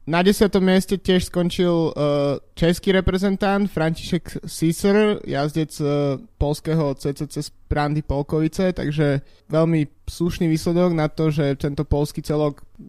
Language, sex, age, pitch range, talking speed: Slovak, male, 20-39, 145-175 Hz, 115 wpm